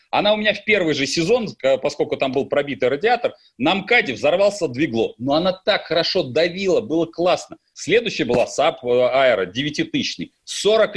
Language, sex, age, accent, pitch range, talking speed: Russian, male, 30-49, native, 150-210 Hz, 160 wpm